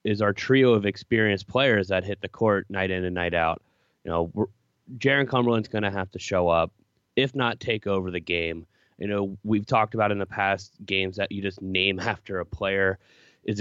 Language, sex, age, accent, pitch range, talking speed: English, male, 20-39, American, 95-125 Hz, 210 wpm